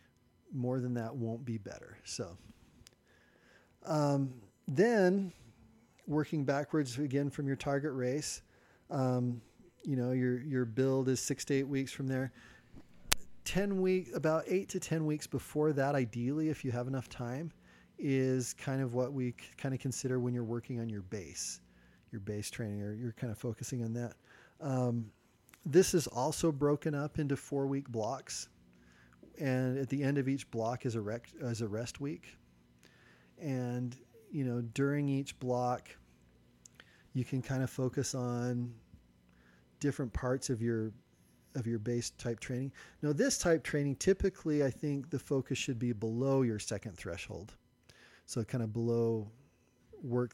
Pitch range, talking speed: 115-140 Hz, 155 wpm